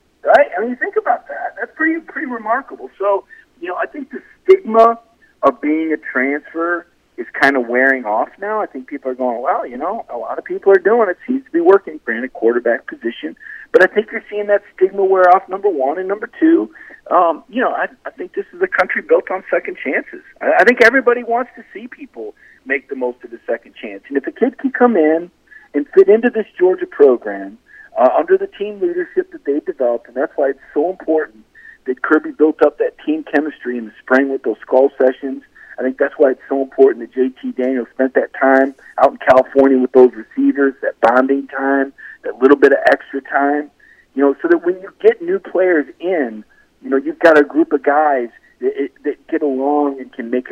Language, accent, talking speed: English, American, 220 wpm